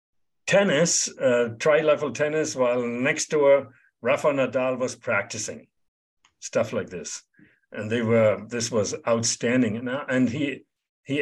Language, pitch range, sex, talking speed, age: English, 110-140 Hz, male, 130 wpm, 60-79